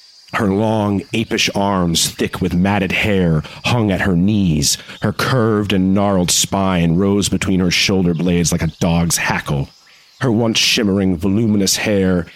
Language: English